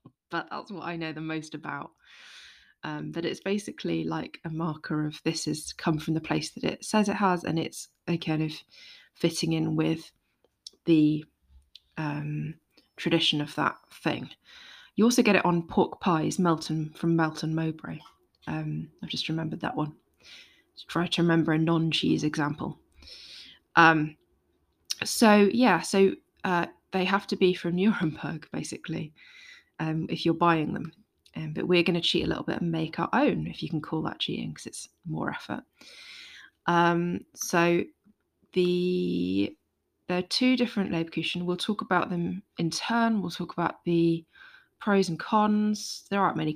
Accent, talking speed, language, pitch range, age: British, 170 wpm, English, 160-190 Hz, 20-39